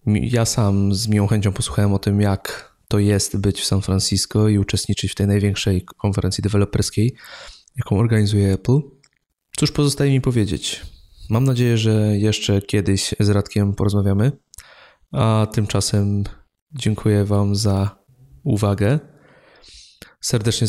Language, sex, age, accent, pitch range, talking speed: Polish, male, 20-39, native, 100-115 Hz, 130 wpm